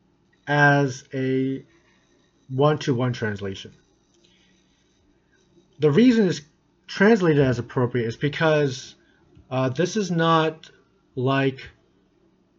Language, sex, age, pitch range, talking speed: English, male, 30-49, 115-140 Hz, 80 wpm